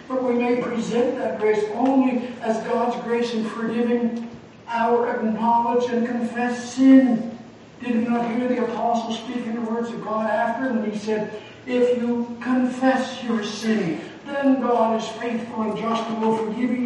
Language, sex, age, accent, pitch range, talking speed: English, male, 60-79, American, 220-245 Hz, 165 wpm